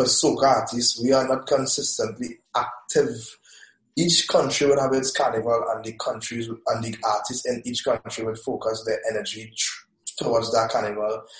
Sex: male